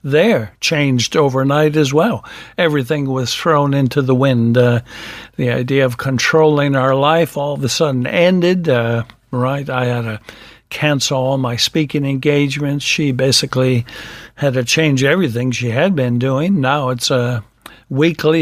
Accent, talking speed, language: American, 155 wpm, English